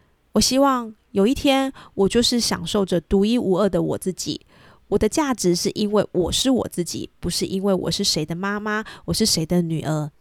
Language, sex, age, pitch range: Chinese, female, 20-39, 175-225 Hz